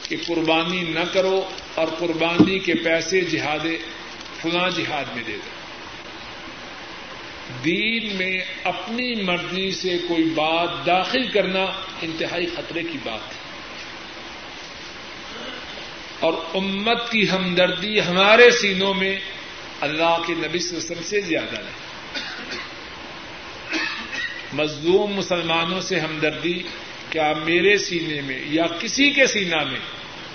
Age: 50-69